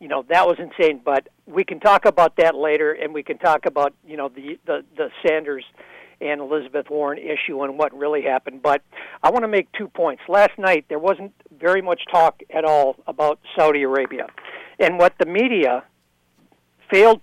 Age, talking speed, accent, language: 60-79, 190 wpm, American, English